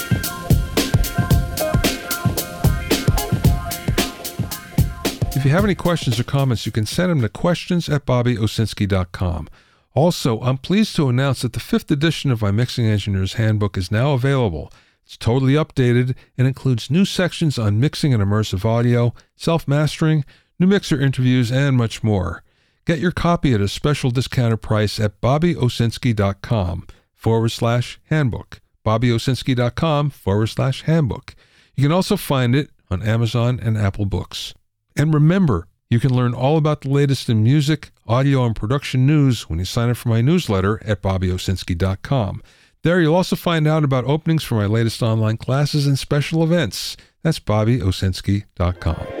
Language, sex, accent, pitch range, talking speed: English, male, American, 105-145 Hz, 145 wpm